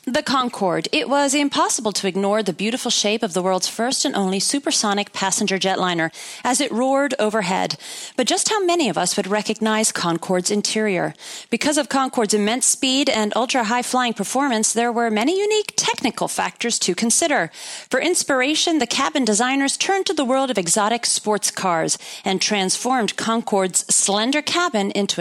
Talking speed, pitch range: 160 wpm, 205-280 Hz